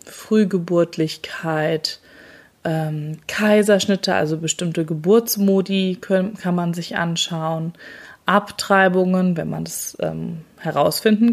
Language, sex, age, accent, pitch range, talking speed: German, female, 20-39, German, 165-205 Hz, 90 wpm